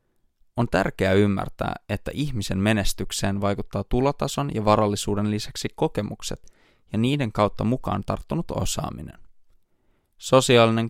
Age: 20-39